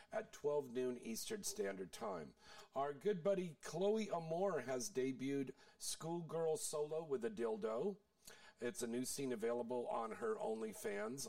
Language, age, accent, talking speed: English, 50-69, American, 140 wpm